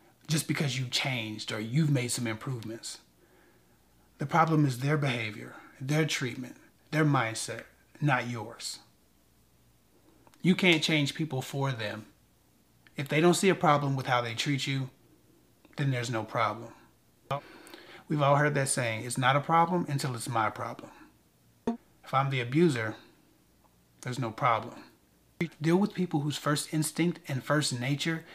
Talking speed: 150 wpm